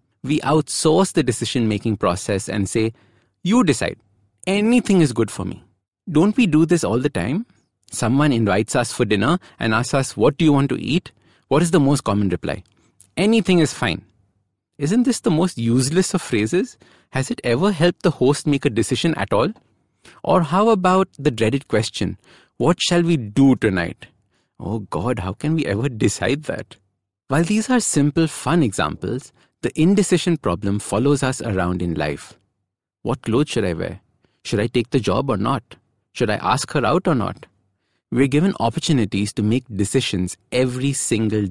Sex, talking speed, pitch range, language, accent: male, 180 wpm, 105-155 Hz, English, Indian